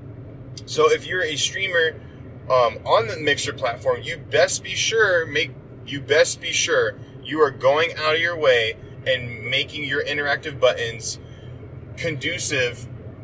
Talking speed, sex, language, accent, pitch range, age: 145 wpm, male, English, American, 125-165 Hz, 20-39